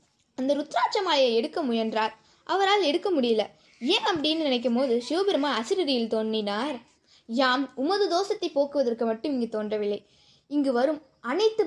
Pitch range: 225-350 Hz